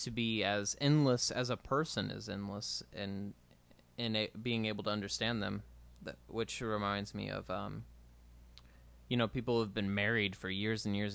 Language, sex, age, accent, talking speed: English, male, 20-39, American, 185 wpm